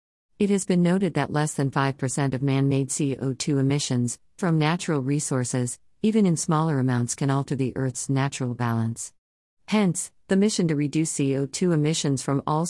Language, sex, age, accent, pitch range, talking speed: English, female, 50-69, American, 130-155 Hz, 160 wpm